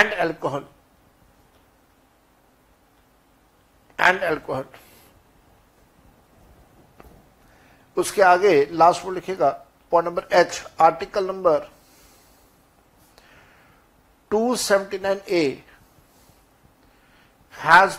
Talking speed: 65 wpm